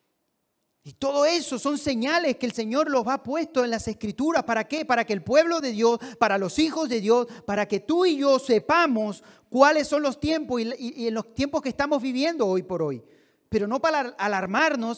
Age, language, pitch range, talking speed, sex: 40-59, Spanish, 195-280 Hz, 205 wpm, male